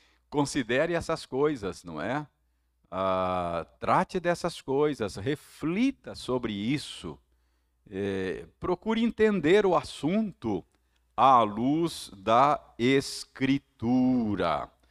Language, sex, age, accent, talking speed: Portuguese, male, 50-69, Brazilian, 85 wpm